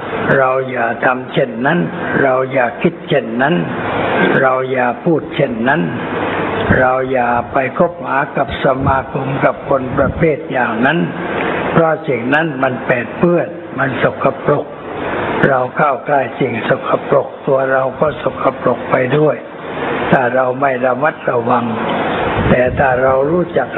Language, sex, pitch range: Thai, male, 125-135 Hz